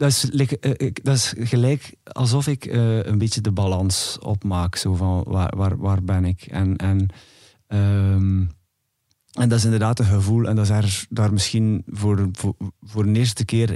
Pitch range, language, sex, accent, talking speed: 100-120 Hz, Dutch, male, Dutch, 160 wpm